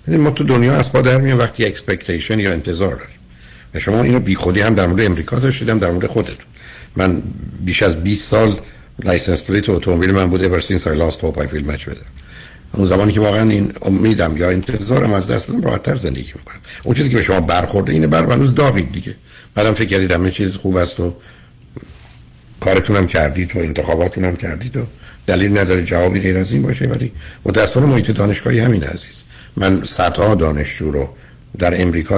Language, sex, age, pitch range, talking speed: Persian, male, 60-79, 85-105 Hz, 180 wpm